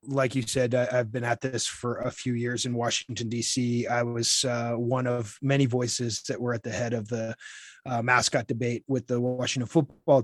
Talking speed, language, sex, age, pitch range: 205 wpm, English, male, 30-49, 120-140 Hz